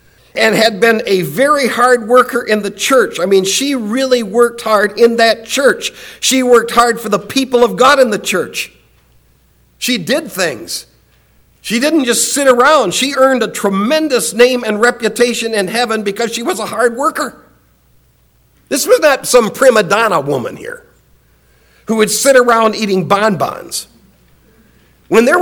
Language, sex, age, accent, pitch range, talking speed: English, male, 50-69, American, 180-240 Hz, 165 wpm